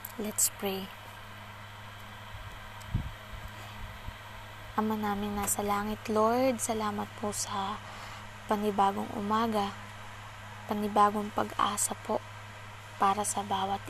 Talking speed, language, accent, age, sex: 80 wpm, Filipino, native, 20-39, female